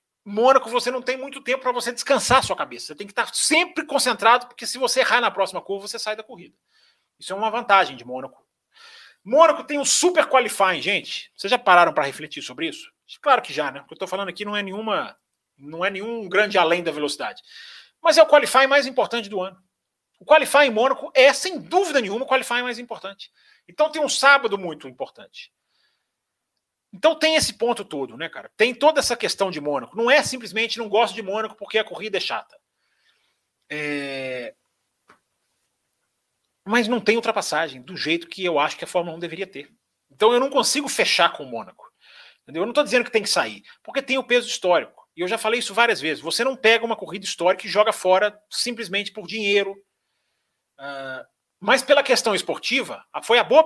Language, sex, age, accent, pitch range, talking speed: Portuguese, male, 40-59, Brazilian, 190-265 Hz, 200 wpm